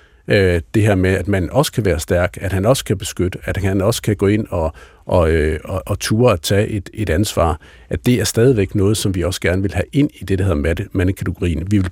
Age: 60-79